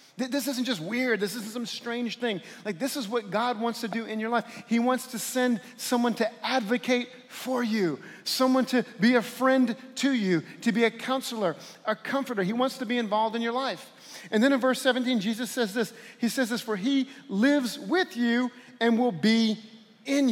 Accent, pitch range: American, 195-245 Hz